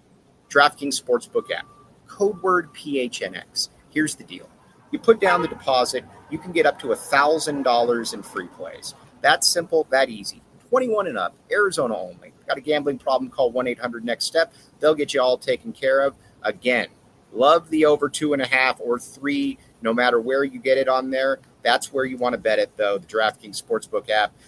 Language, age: English, 40-59